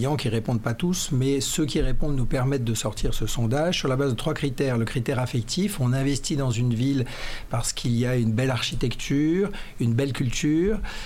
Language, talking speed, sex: French, 205 wpm, male